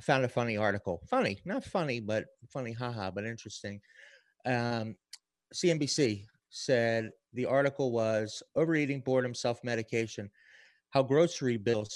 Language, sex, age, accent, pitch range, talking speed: English, male, 30-49, American, 105-125 Hz, 125 wpm